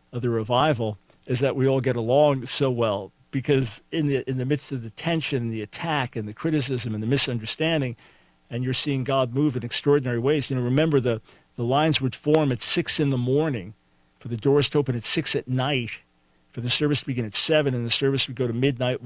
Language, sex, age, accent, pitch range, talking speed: English, male, 50-69, American, 120-140 Hz, 225 wpm